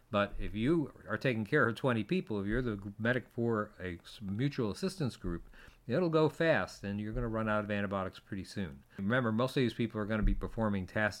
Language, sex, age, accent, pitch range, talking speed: English, male, 50-69, American, 100-125 Hz, 225 wpm